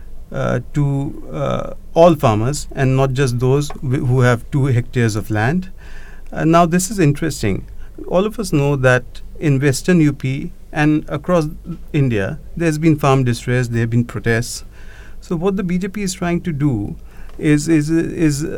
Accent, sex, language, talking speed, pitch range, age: Indian, male, English, 160 wpm, 125-165 Hz, 50-69